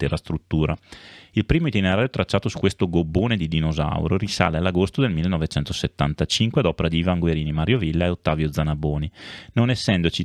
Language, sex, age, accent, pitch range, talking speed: Italian, male, 30-49, native, 75-100 Hz, 160 wpm